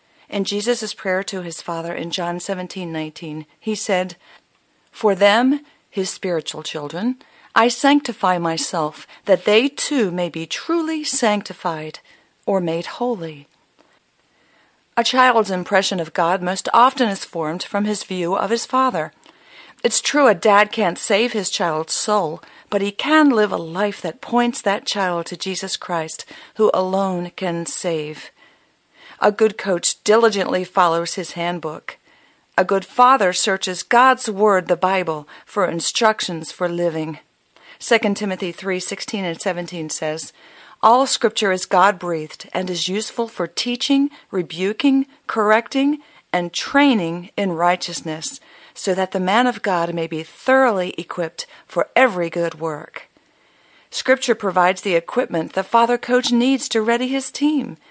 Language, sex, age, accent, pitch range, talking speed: English, female, 50-69, American, 175-235 Hz, 140 wpm